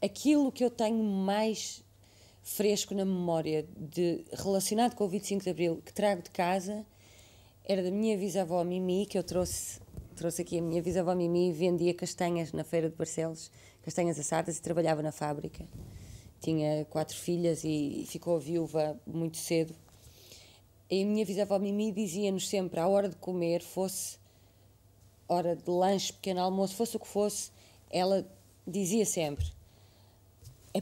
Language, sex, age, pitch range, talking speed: Portuguese, female, 20-39, 150-210 Hz, 150 wpm